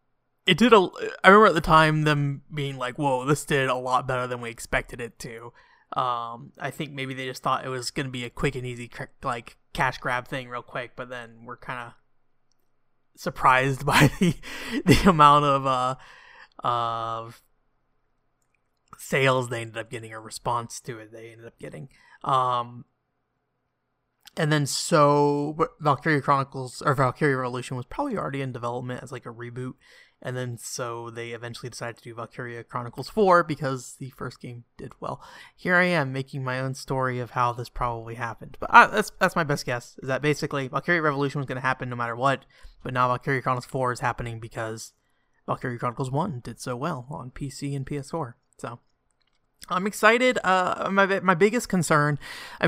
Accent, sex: American, male